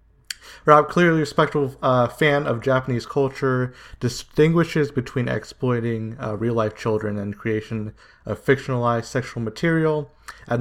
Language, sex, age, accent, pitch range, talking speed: English, male, 20-39, American, 110-130 Hz, 125 wpm